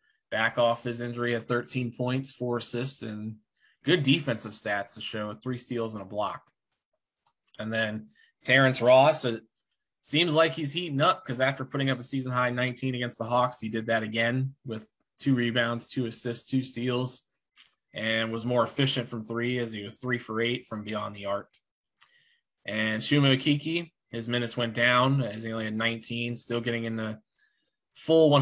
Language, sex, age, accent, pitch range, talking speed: English, male, 20-39, American, 110-130 Hz, 180 wpm